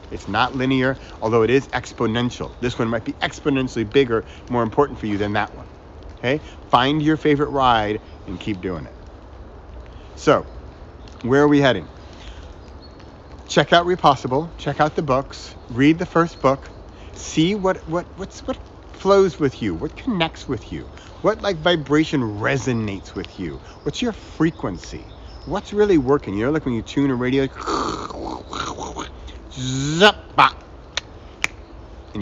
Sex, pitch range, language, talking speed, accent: male, 95-145 Hz, English, 145 wpm, American